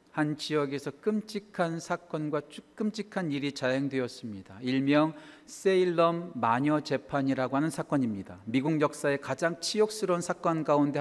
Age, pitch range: 40-59, 140-190 Hz